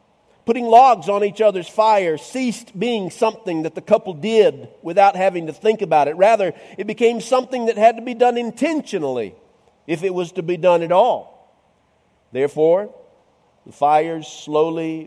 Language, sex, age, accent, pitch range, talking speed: English, male, 50-69, American, 185-240 Hz, 165 wpm